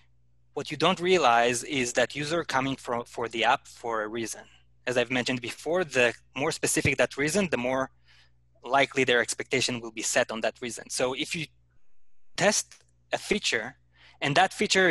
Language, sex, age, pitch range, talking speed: English, male, 20-39, 110-140 Hz, 175 wpm